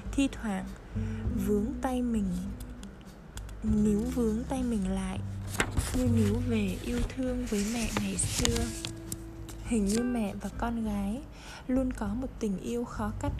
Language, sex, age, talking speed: Vietnamese, female, 10-29, 145 wpm